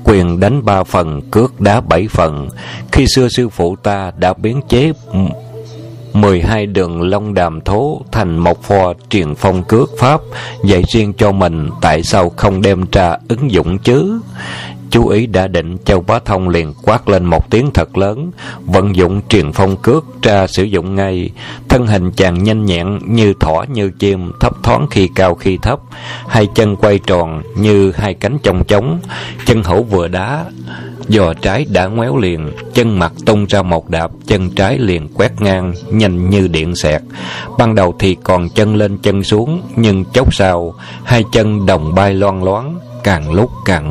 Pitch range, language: 90-115 Hz, Vietnamese